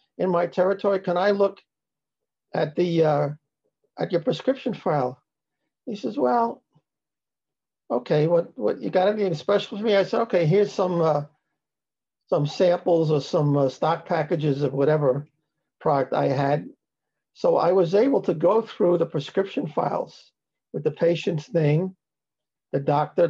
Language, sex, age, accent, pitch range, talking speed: English, male, 50-69, American, 145-175 Hz, 150 wpm